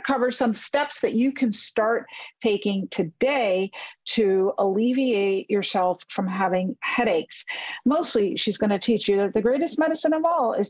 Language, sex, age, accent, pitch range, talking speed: English, female, 50-69, American, 200-265 Hz, 155 wpm